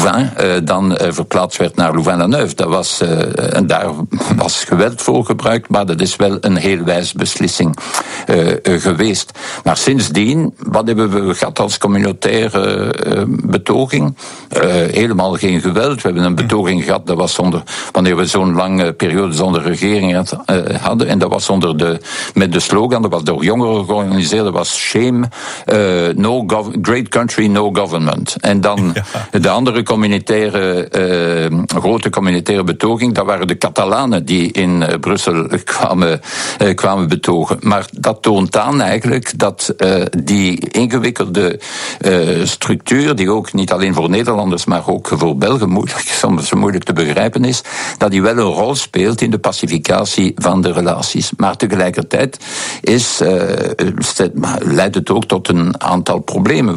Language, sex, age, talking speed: Dutch, male, 60-79, 145 wpm